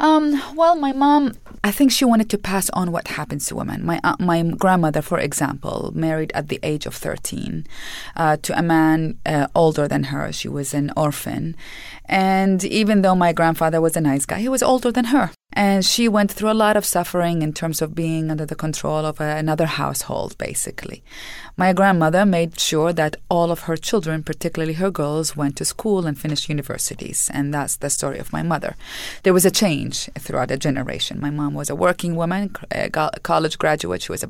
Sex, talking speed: female, 205 wpm